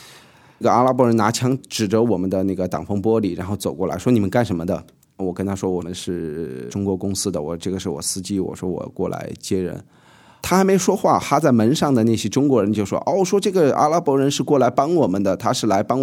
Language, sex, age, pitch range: Chinese, male, 20-39, 95-130 Hz